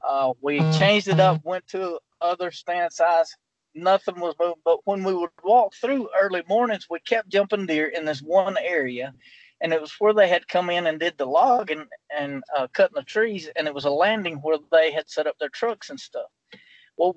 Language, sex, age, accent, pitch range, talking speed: English, male, 40-59, American, 155-205 Hz, 215 wpm